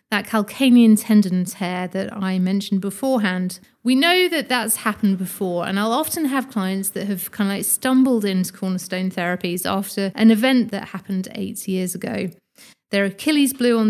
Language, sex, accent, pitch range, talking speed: English, female, British, 190-240 Hz, 175 wpm